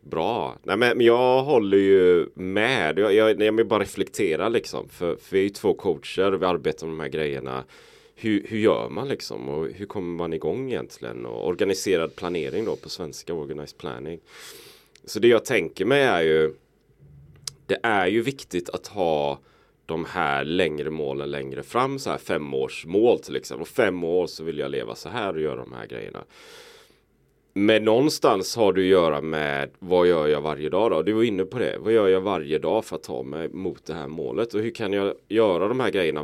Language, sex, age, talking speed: Swedish, male, 30-49, 205 wpm